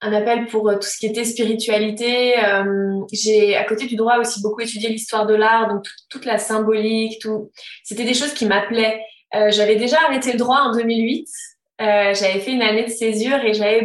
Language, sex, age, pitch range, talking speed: French, female, 20-39, 210-240 Hz, 205 wpm